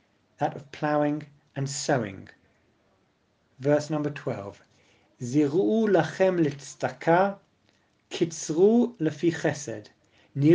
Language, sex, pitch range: English, male, 135-175 Hz